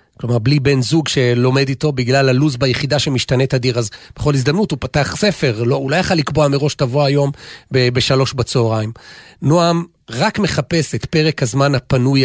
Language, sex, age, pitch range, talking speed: Hebrew, male, 40-59, 120-155 Hz, 170 wpm